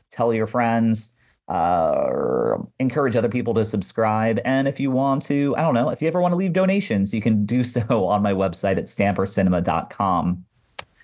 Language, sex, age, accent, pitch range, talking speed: English, male, 30-49, American, 100-130 Hz, 185 wpm